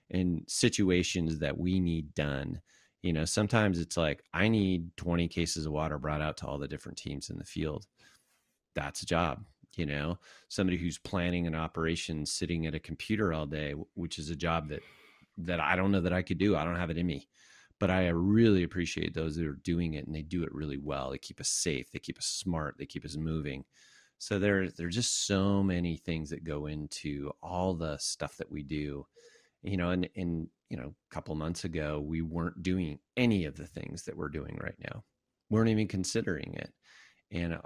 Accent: American